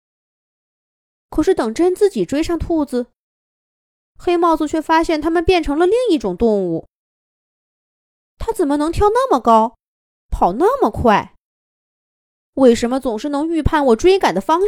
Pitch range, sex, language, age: 225-355 Hz, female, Chinese, 20-39